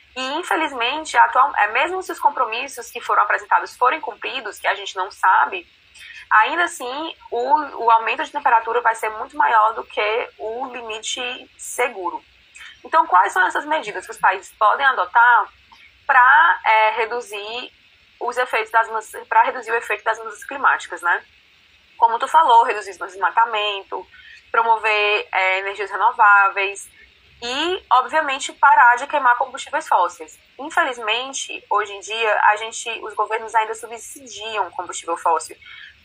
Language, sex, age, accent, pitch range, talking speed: Portuguese, female, 20-39, Brazilian, 220-320 Hz, 140 wpm